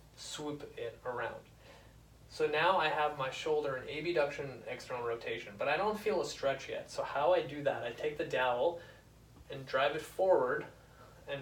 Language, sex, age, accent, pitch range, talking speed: English, male, 20-39, American, 130-170 Hz, 185 wpm